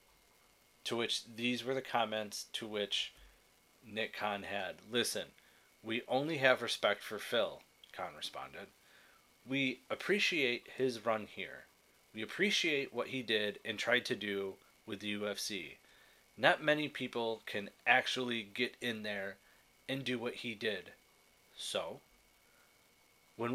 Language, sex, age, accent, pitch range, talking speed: English, male, 30-49, American, 105-125 Hz, 135 wpm